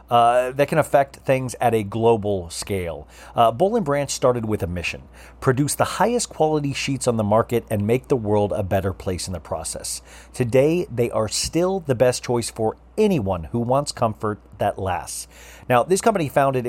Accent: American